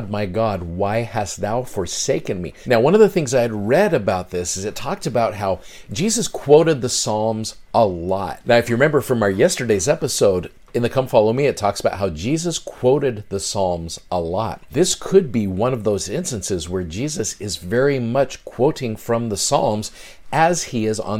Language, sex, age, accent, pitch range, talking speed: English, male, 50-69, American, 105-140 Hz, 200 wpm